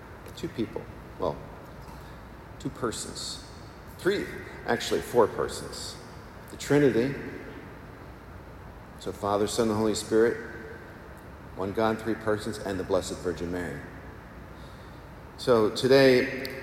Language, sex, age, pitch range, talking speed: English, male, 50-69, 110-145 Hz, 100 wpm